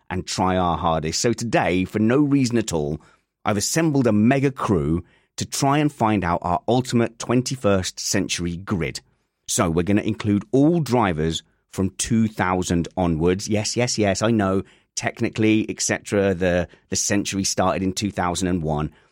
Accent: British